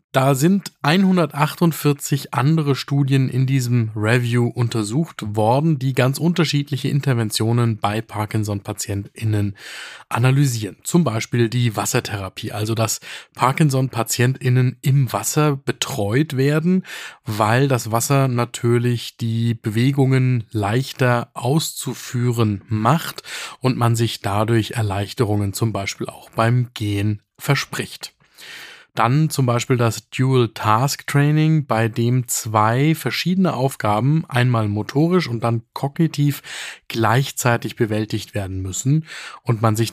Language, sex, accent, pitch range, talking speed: German, male, German, 110-135 Hz, 105 wpm